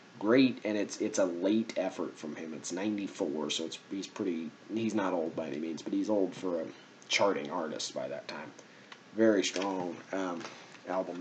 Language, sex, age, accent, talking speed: English, male, 30-49, American, 185 wpm